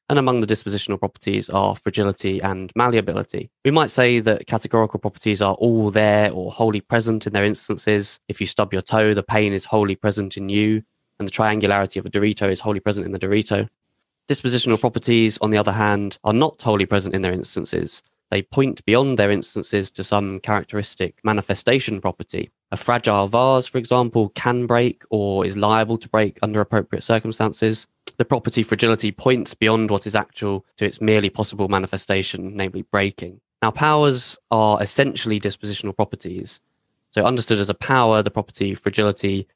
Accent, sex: British, male